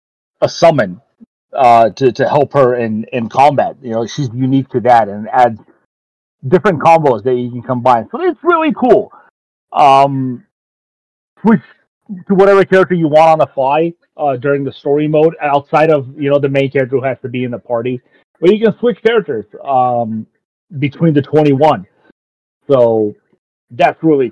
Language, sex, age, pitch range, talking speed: English, male, 30-49, 130-160 Hz, 175 wpm